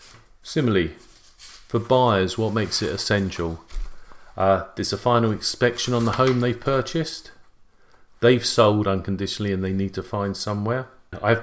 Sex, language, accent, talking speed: male, English, British, 140 wpm